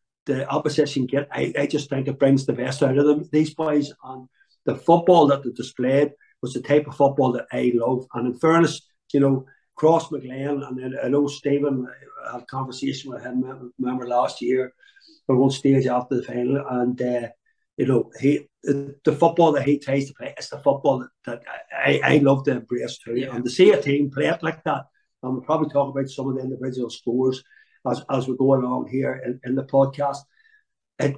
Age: 50-69